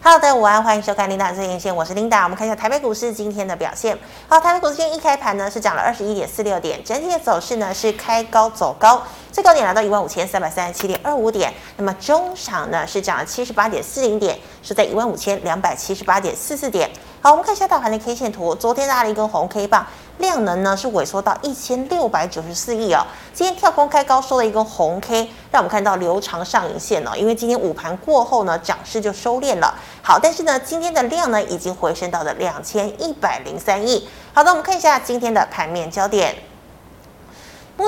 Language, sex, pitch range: Chinese, female, 200-270 Hz